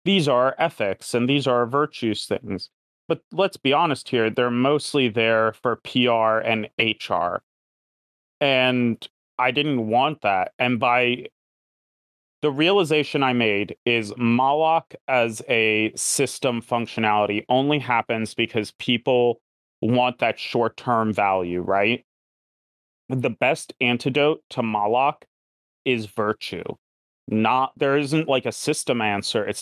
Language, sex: English, male